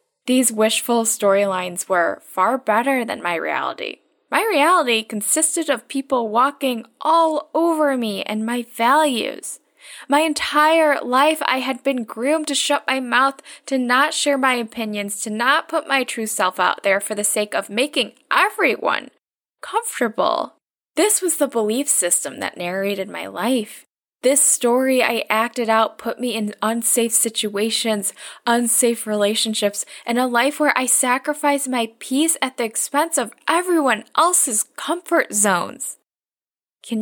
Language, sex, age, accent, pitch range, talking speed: English, female, 10-29, American, 220-285 Hz, 145 wpm